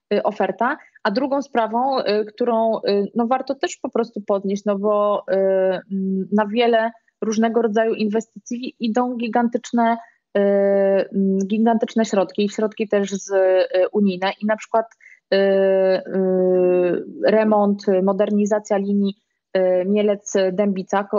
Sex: female